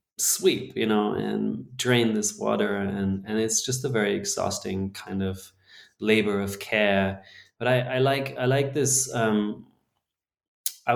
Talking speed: 155 wpm